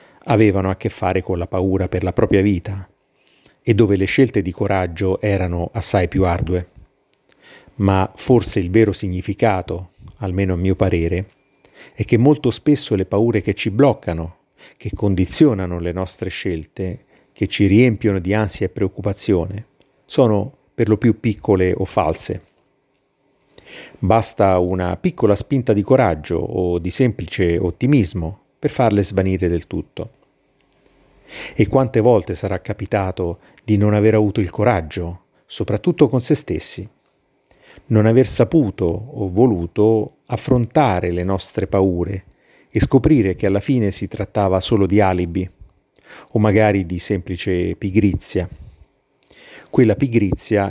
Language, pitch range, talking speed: Italian, 95-115 Hz, 135 wpm